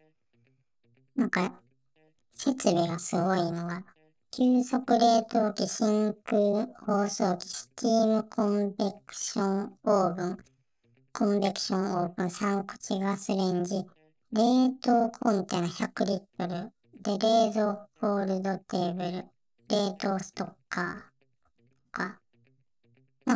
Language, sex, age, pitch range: Japanese, male, 40-59, 155-205 Hz